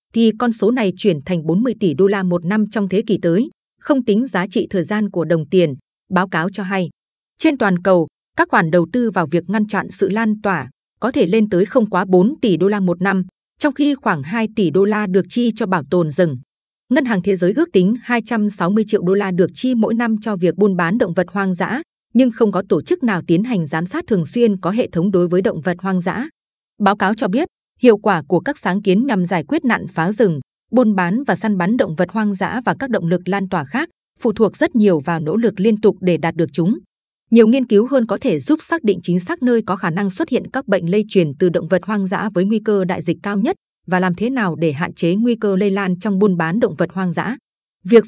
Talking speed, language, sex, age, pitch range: 260 wpm, Vietnamese, female, 20-39, 180-230 Hz